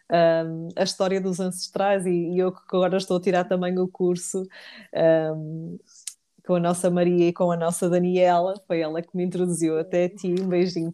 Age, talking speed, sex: 20-39, 180 wpm, female